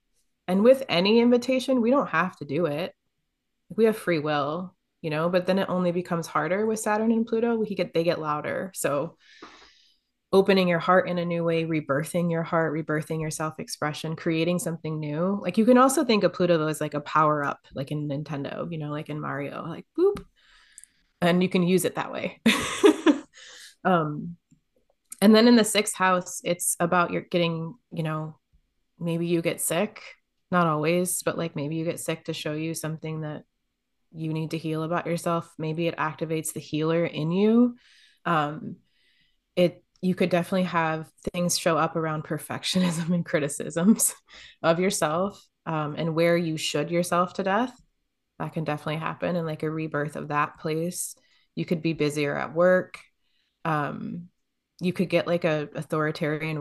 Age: 20-39